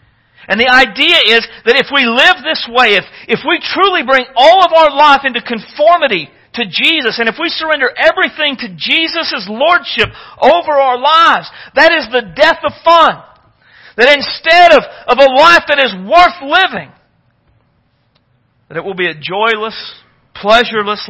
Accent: American